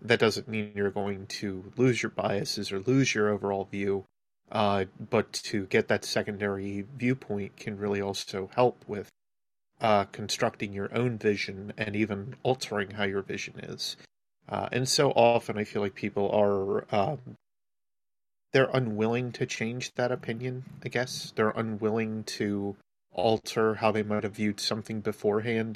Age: 30-49